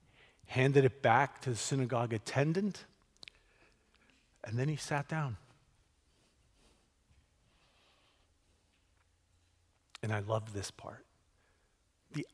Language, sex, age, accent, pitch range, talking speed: English, male, 50-69, American, 95-140 Hz, 90 wpm